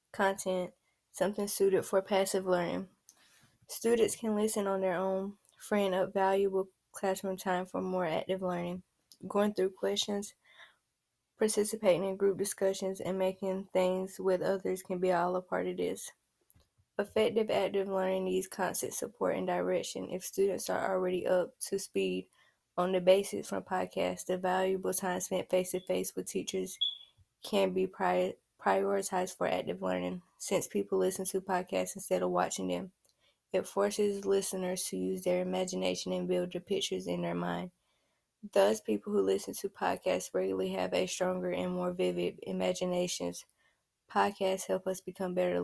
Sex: female